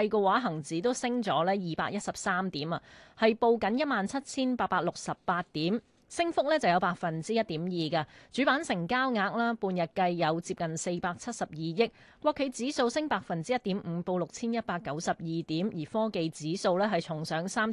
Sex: female